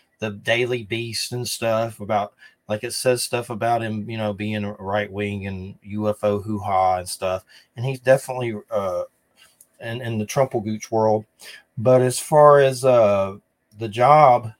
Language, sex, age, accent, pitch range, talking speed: English, male, 30-49, American, 110-140 Hz, 160 wpm